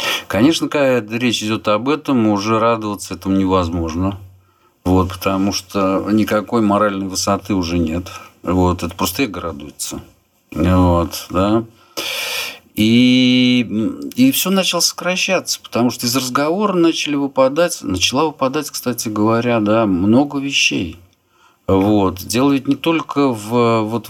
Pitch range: 95-120 Hz